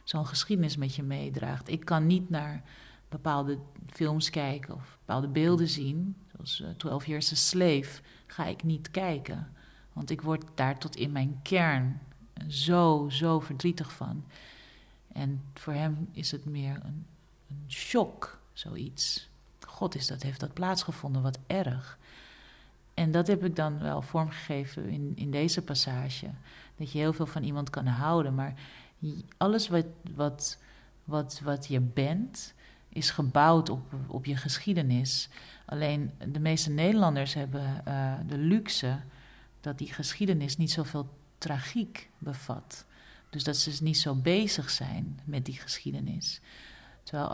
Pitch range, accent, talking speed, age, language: 140-165 Hz, Dutch, 140 wpm, 40-59, Dutch